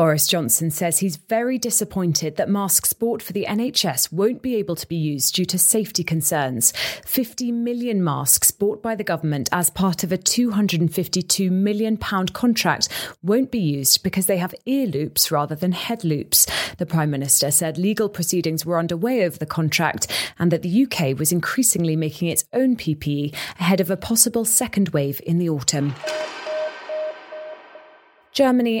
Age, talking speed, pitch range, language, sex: 30-49, 165 wpm, 160-220 Hz, English, female